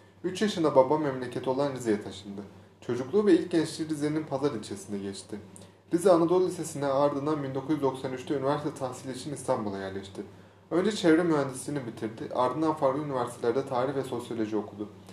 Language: Turkish